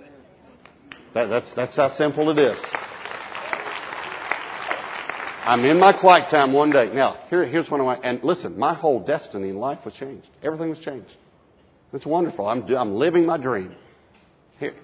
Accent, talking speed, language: American, 160 wpm, English